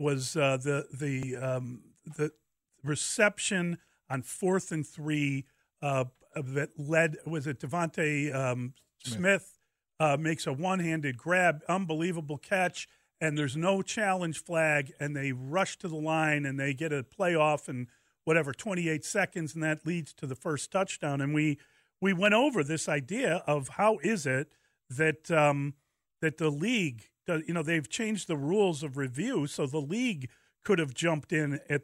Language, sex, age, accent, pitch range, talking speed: English, male, 40-59, American, 145-175 Hz, 160 wpm